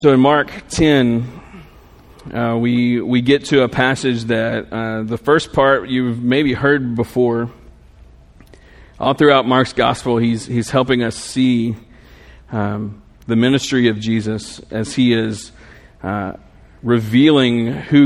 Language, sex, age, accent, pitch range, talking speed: English, male, 40-59, American, 110-125 Hz, 135 wpm